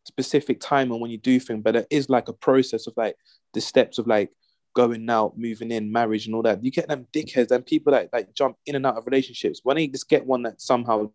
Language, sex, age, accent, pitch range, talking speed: English, male, 20-39, British, 120-145 Hz, 260 wpm